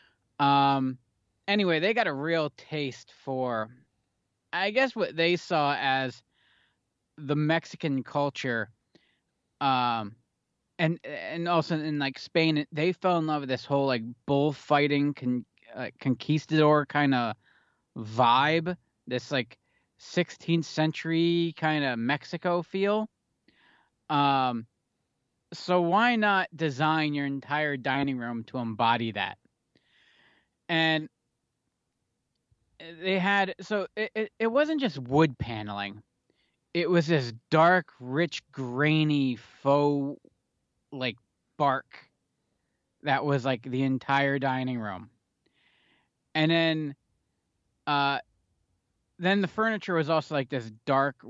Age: 20-39